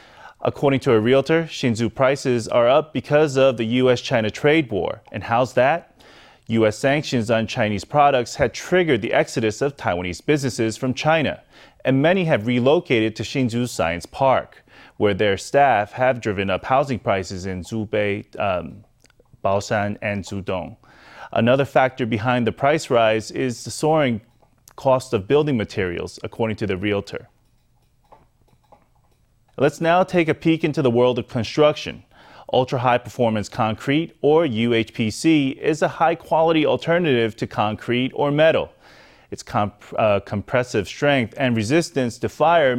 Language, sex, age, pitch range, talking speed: English, male, 30-49, 110-145 Hz, 140 wpm